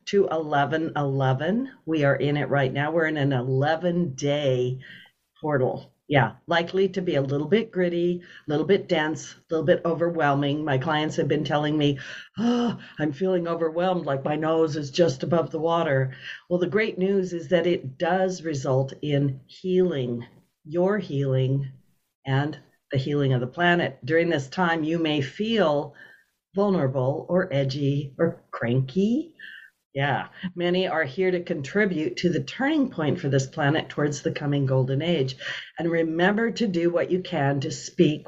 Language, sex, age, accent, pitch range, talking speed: English, female, 60-79, American, 140-175 Hz, 165 wpm